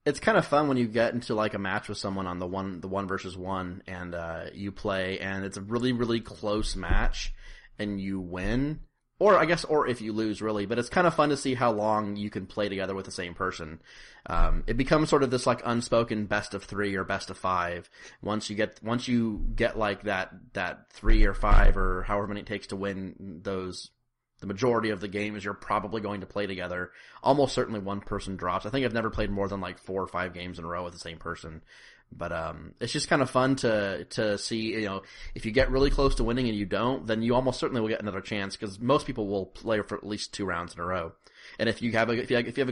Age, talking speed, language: 30-49, 255 wpm, English